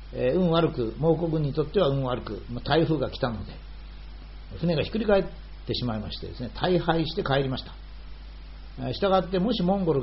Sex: male